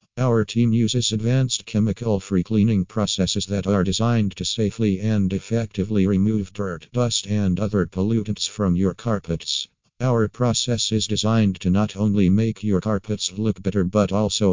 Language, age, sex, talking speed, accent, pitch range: English, 50-69, male, 155 wpm, American, 95-110 Hz